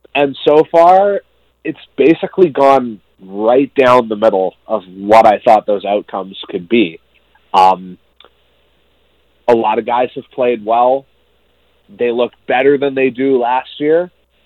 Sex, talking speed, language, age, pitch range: male, 140 wpm, English, 30-49, 100-135 Hz